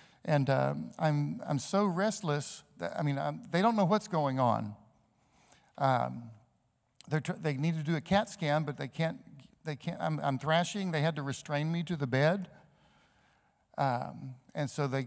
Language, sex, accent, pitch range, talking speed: English, male, American, 130-160 Hz, 185 wpm